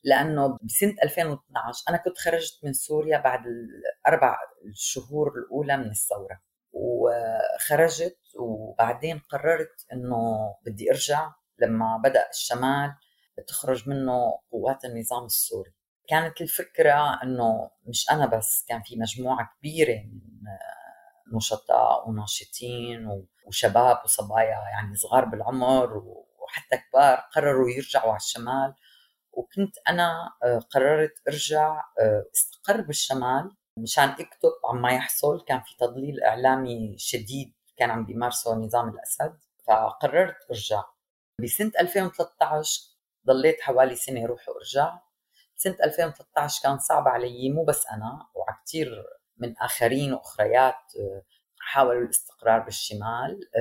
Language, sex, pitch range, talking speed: Arabic, female, 115-155 Hz, 110 wpm